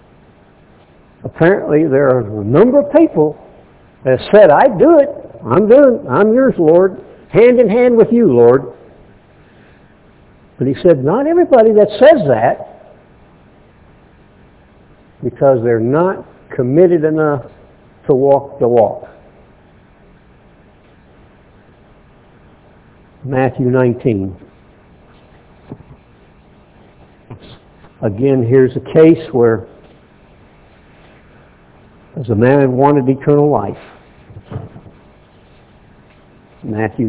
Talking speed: 90 wpm